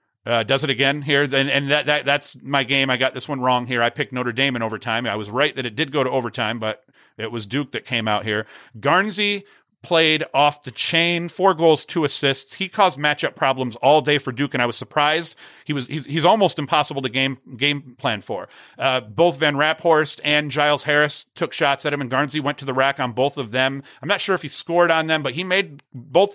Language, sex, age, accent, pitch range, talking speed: English, male, 40-59, American, 125-150 Hz, 240 wpm